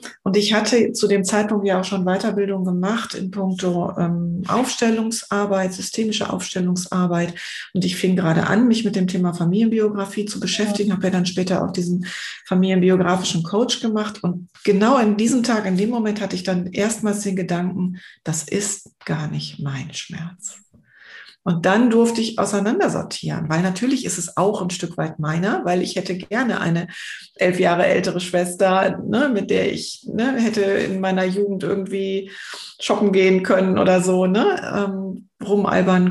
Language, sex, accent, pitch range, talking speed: German, female, German, 180-210 Hz, 160 wpm